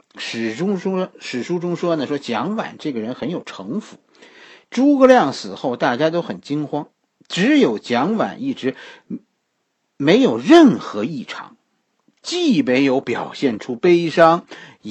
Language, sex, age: Chinese, male, 50-69